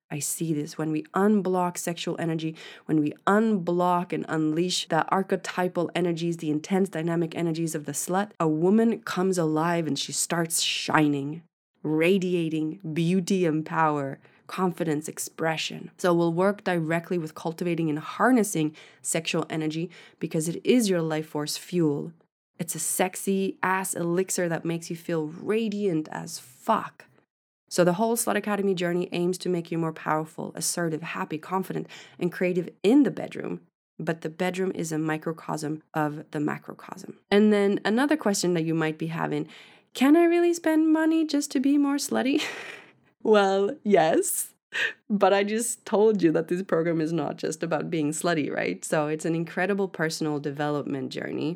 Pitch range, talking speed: 160-195 Hz, 160 wpm